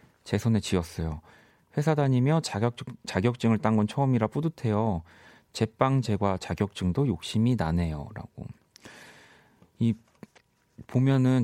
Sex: male